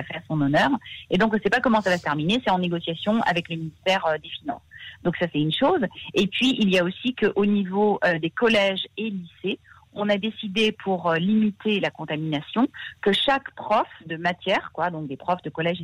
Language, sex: French, female